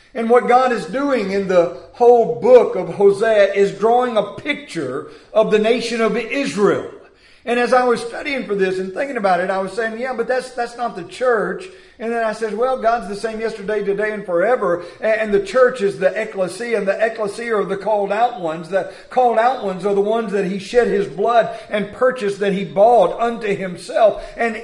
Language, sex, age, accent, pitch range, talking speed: English, male, 50-69, American, 190-240 Hz, 210 wpm